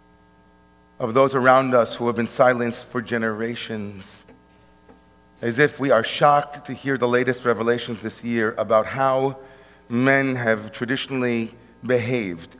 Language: English